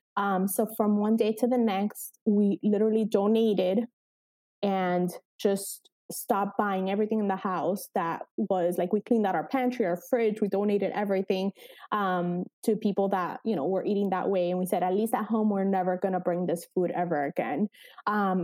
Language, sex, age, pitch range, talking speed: English, female, 20-39, 180-220 Hz, 190 wpm